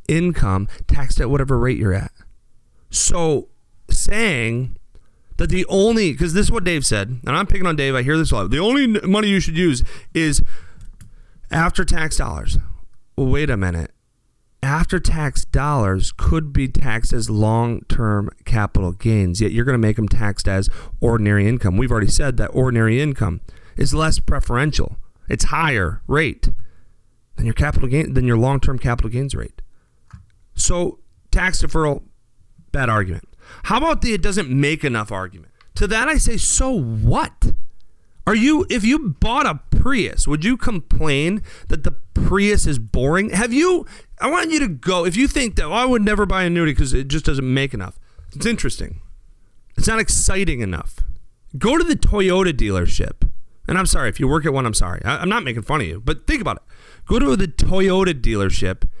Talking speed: 180 wpm